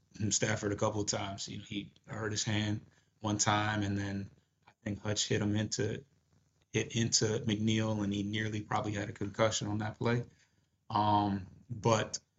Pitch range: 105-120 Hz